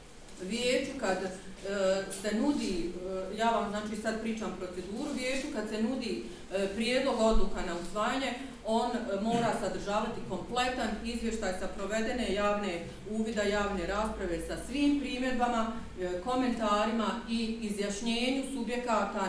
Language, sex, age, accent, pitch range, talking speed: English, female, 40-59, Croatian, 185-230 Hz, 130 wpm